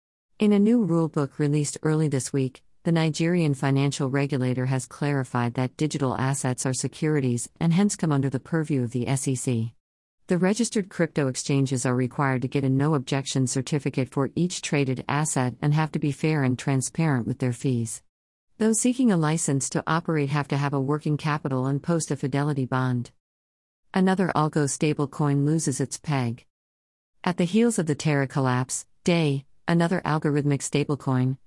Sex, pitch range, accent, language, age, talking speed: female, 130-155 Hz, American, English, 50-69, 170 wpm